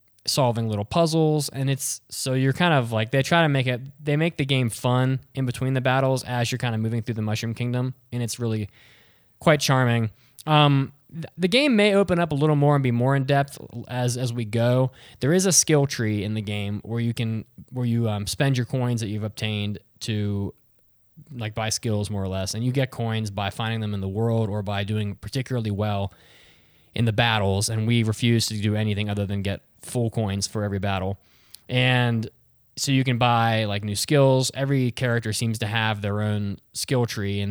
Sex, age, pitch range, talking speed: male, 20-39, 105-130 Hz, 215 wpm